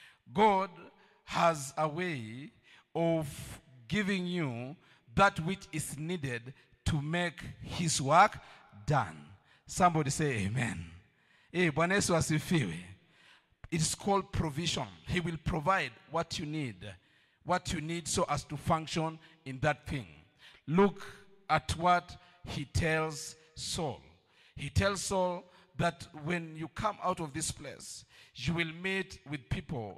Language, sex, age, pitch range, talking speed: English, male, 50-69, 145-180 Hz, 120 wpm